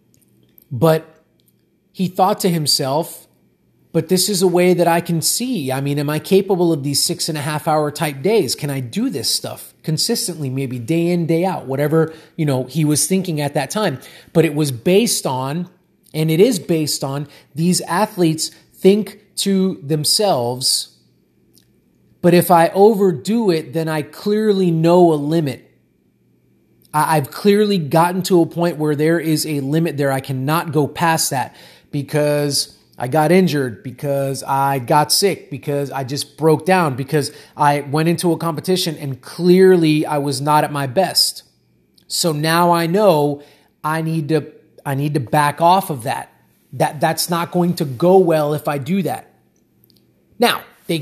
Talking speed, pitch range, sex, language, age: 170 wpm, 145-180 Hz, male, English, 30-49